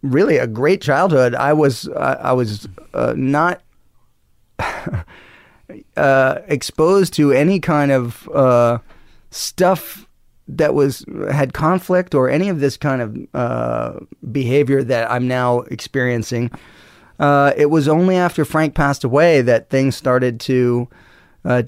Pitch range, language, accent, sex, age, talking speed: 120-145 Hz, English, American, male, 30-49, 135 wpm